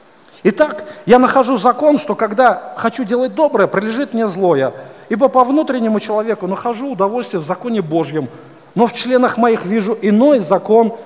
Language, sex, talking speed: Russian, male, 150 wpm